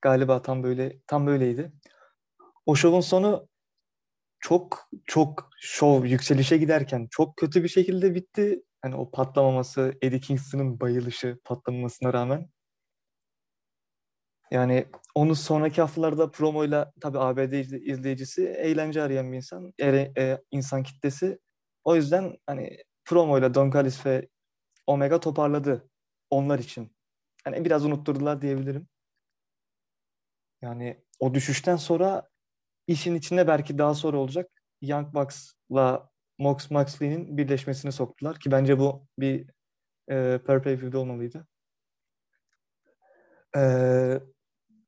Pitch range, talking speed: 130-155 Hz, 105 wpm